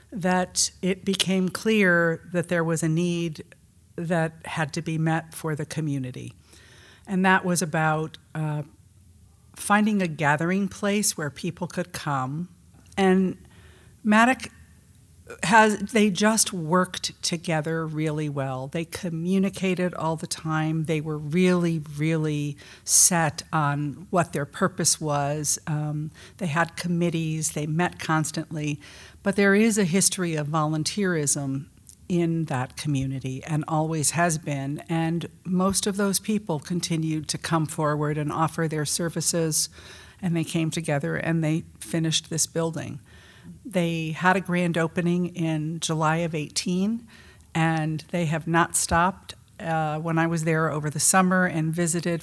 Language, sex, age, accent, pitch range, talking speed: English, female, 50-69, American, 150-175 Hz, 140 wpm